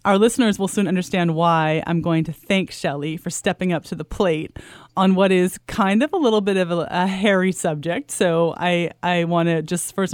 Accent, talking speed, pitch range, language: American, 220 wpm, 170-205 Hz, English